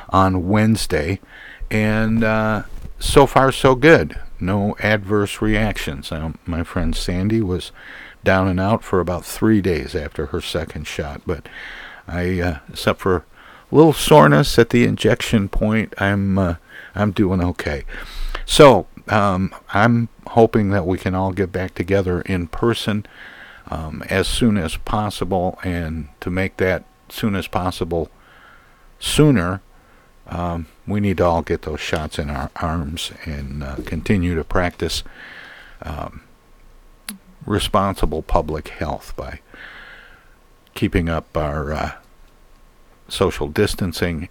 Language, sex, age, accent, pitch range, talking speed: English, male, 50-69, American, 85-105 Hz, 130 wpm